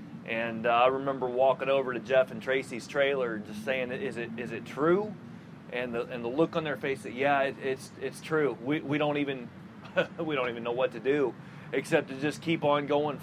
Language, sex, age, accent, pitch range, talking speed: English, male, 30-49, American, 135-170 Hz, 225 wpm